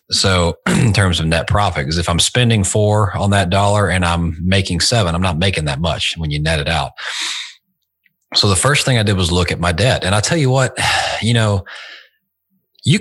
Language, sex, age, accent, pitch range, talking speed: English, male, 30-49, American, 90-115 Hz, 215 wpm